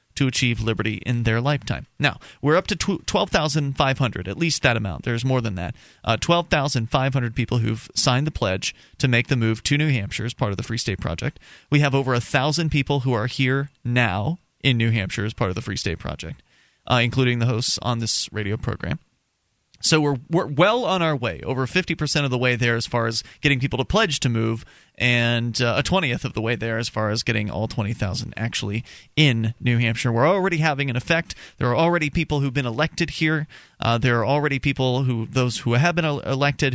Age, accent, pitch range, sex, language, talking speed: 30-49, American, 115-145 Hz, male, English, 225 wpm